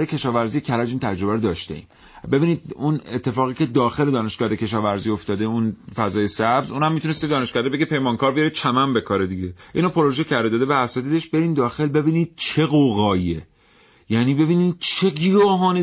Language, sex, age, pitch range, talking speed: Persian, male, 40-59, 120-160 Hz, 160 wpm